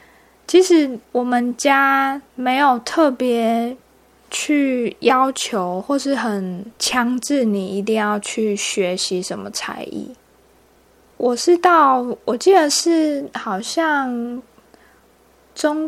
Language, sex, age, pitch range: Chinese, female, 20-39, 220-285 Hz